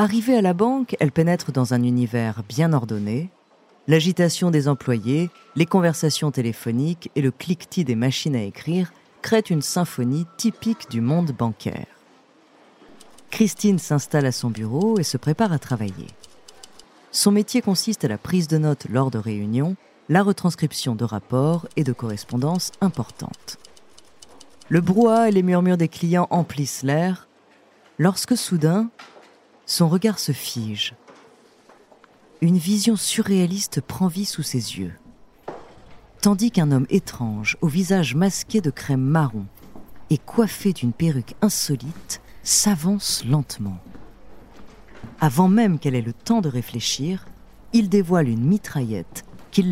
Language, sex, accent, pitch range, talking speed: French, female, French, 125-190 Hz, 135 wpm